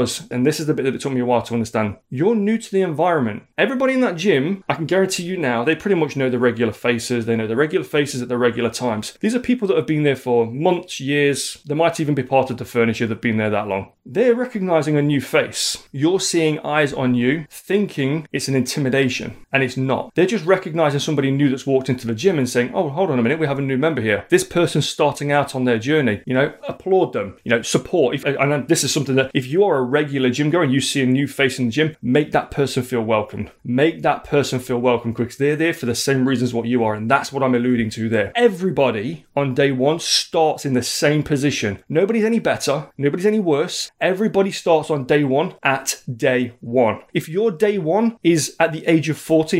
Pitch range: 125-165 Hz